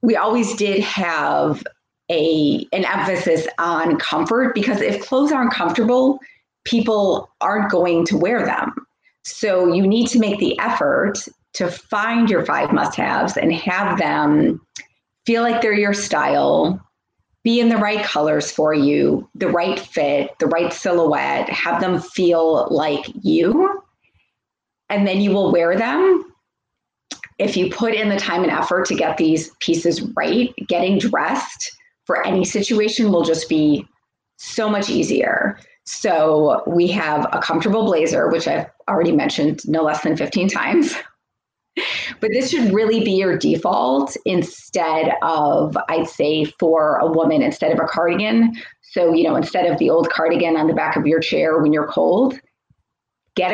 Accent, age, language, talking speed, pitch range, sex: American, 30-49, English, 155 wpm, 165-230 Hz, female